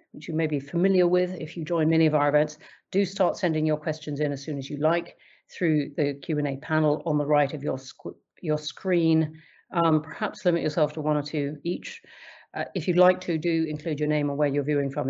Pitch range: 145-165 Hz